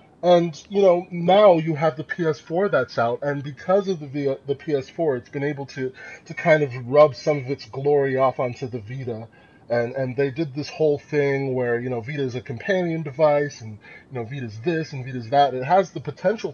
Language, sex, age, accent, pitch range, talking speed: English, male, 20-39, American, 135-170 Hz, 225 wpm